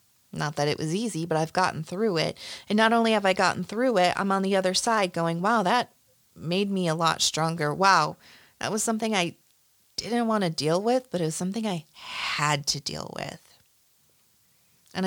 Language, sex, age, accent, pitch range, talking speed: English, female, 30-49, American, 160-205 Hz, 205 wpm